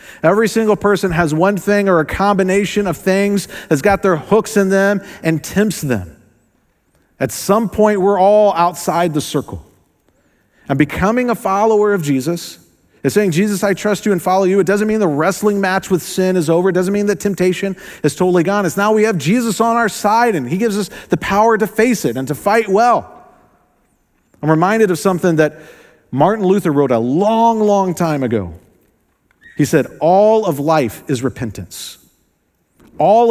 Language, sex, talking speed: English, male, 185 wpm